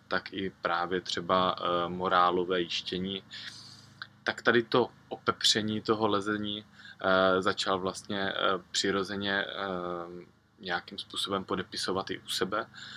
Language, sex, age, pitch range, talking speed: Czech, male, 20-39, 95-105 Hz, 115 wpm